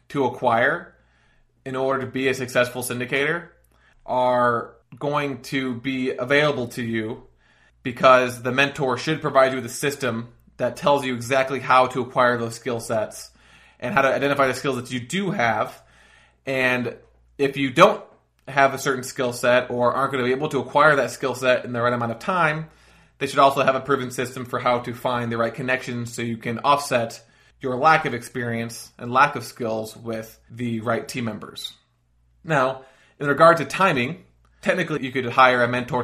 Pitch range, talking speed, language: 120-140 Hz, 190 wpm, English